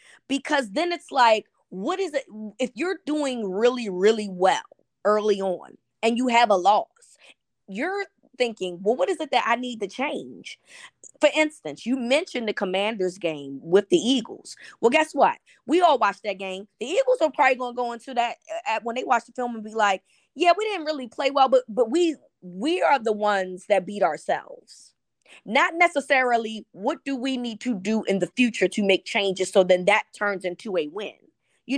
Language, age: English, 20-39